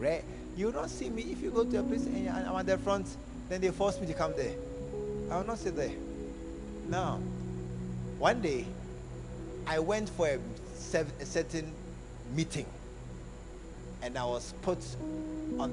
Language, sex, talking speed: English, male, 170 wpm